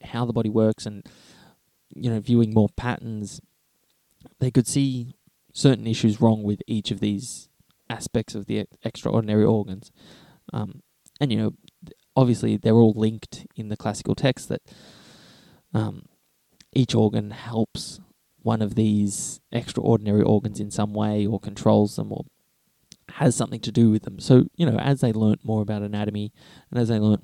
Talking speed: 160 wpm